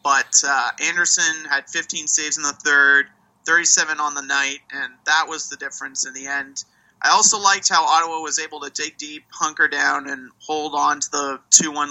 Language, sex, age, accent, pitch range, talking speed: English, male, 30-49, American, 140-180 Hz, 190 wpm